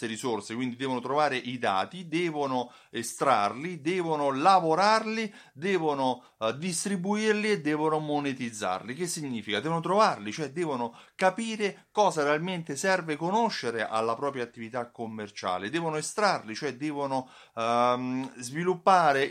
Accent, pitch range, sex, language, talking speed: native, 115-160 Hz, male, Italian, 110 wpm